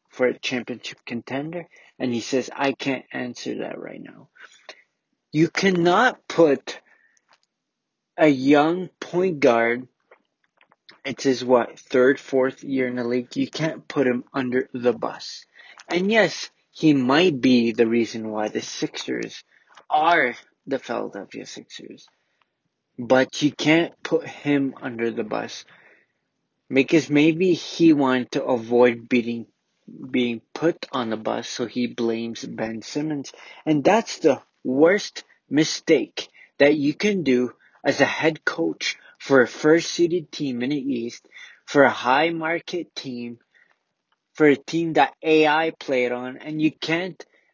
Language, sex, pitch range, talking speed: English, male, 125-160 Hz, 140 wpm